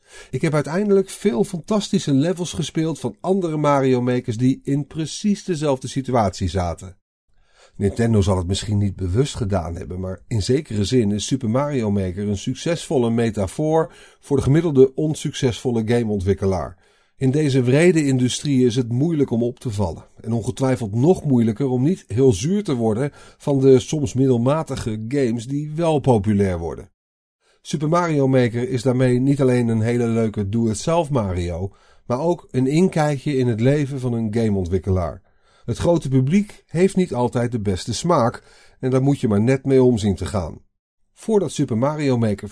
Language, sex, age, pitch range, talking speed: Dutch, male, 50-69, 105-145 Hz, 165 wpm